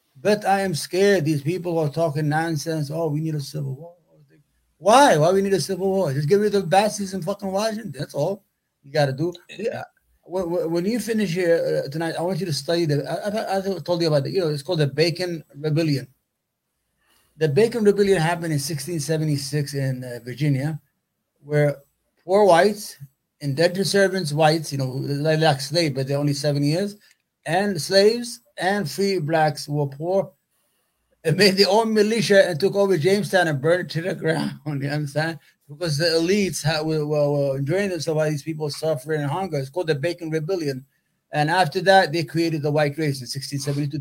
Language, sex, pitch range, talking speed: English, male, 145-185 Hz, 190 wpm